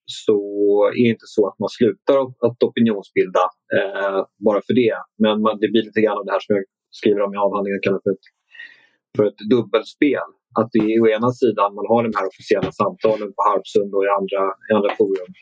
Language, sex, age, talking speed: Swedish, male, 30-49, 205 wpm